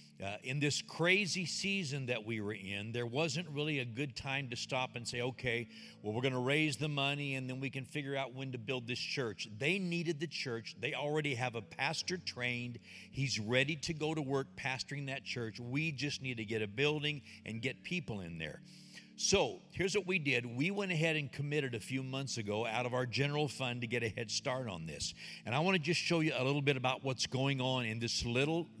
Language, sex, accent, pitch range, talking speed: English, male, American, 115-155 Hz, 235 wpm